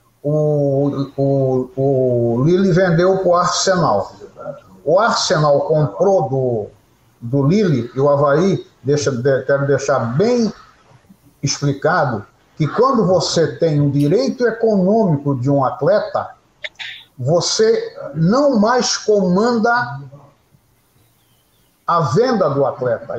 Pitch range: 140-205 Hz